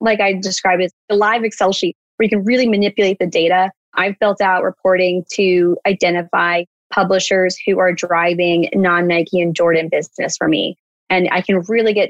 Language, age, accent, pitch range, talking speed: English, 20-39, American, 170-190 Hz, 180 wpm